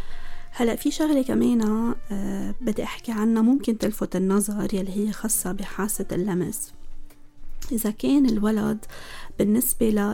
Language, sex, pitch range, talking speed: Arabic, female, 195-235 Hz, 125 wpm